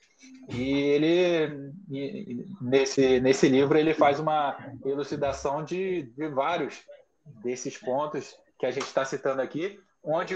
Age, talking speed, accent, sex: 20-39, 120 wpm, Brazilian, male